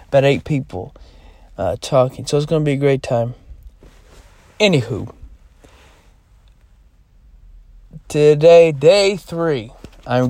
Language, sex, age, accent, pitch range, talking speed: English, male, 40-59, American, 125-165 Hz, 105 wpm